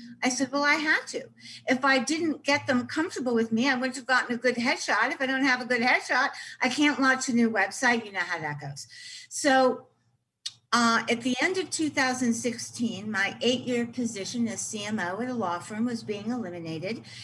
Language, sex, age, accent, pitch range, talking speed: English, female, 50-69, American, 165-250 Hz, 200 wpm